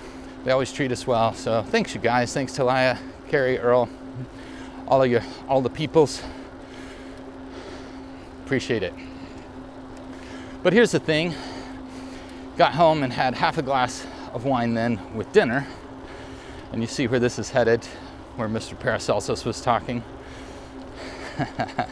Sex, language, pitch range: male, English, 105-135 Hz